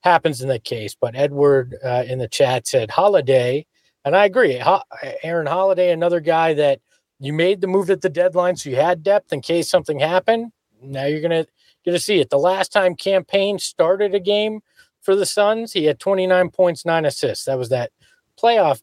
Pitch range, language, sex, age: 145-185 Hz, English, male, 40-59